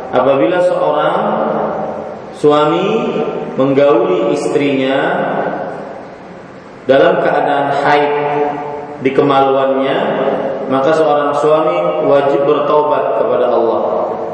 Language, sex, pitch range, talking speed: Malay, male, 130-150 Hz, 70 wpm